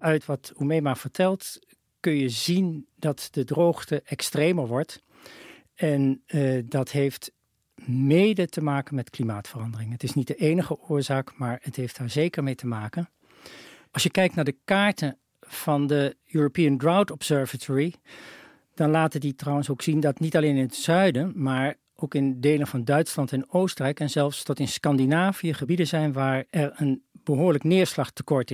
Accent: Dutch